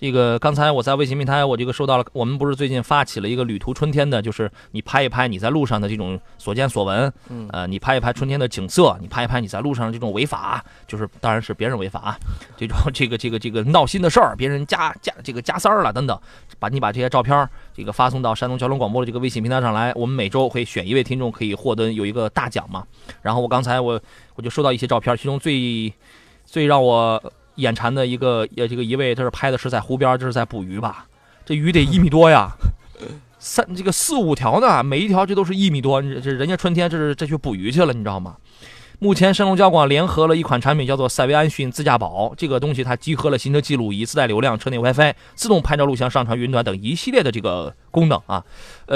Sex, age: male, 20-39